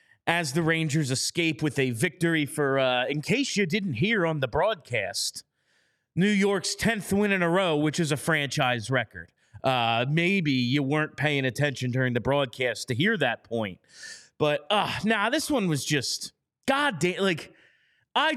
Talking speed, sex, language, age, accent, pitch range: 175 wpm, male, English, 30-49, American, 135-180 Hz